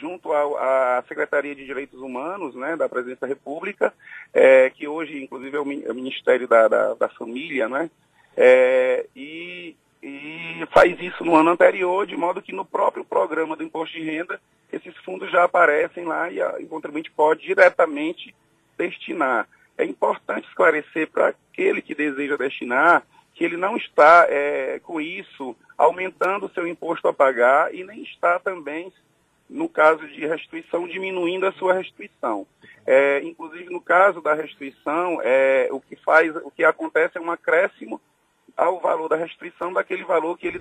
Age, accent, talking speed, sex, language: 40-59, Brazilian, 150 wpm, male, Portuguese